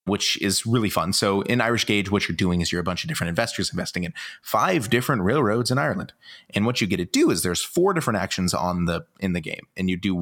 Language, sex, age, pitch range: English, male, 30-49, 90-120 Hz